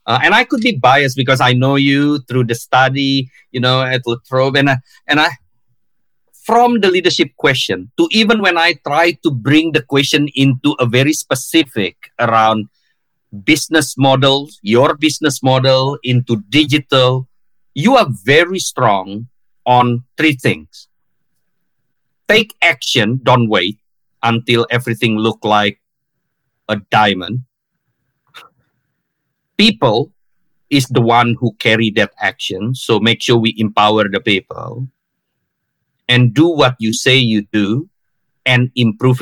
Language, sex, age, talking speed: English, male, 50-69, 135 wpm